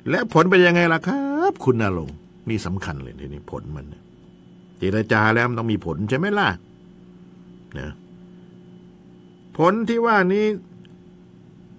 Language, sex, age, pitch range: Thai, male, 60-79, 100-160 Hz